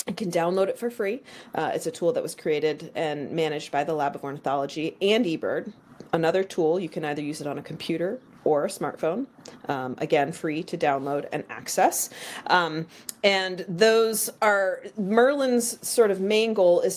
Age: 30-49